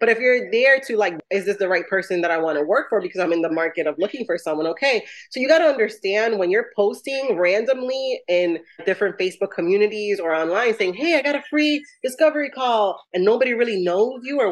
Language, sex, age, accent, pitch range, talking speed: English, female, 20-39, American, 175-255 Hz, 230 wpm